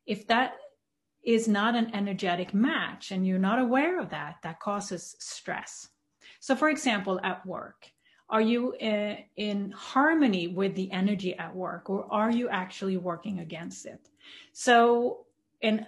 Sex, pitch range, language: female, 190-235 Hz, English